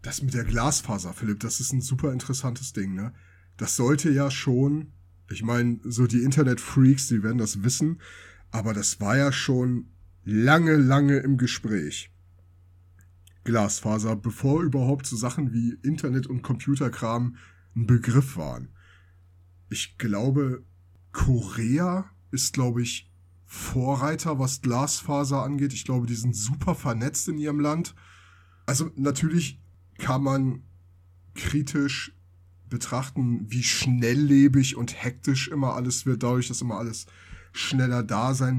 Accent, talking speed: German, 130 wpm